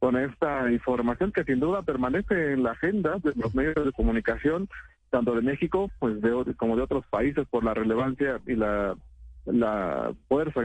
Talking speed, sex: 175 wpm, male